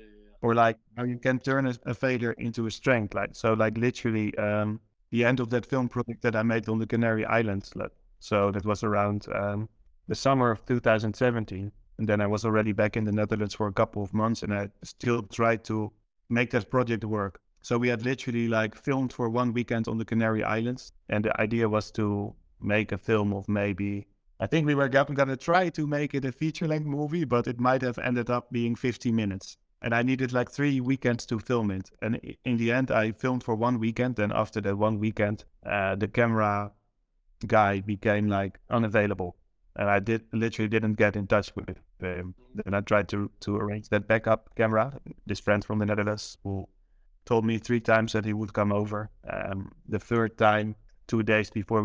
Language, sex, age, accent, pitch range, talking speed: English, male, 30-49, Dutch, 105-120 Hz, 205 wpm